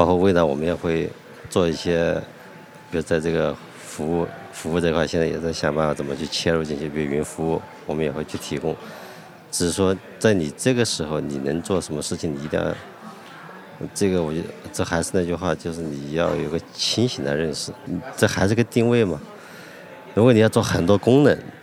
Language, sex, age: Chinese, male, 50-69